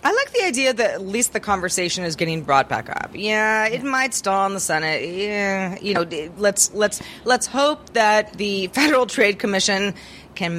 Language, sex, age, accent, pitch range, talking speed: English, female, 30-49, American, 180-235 Hz, 195 wpm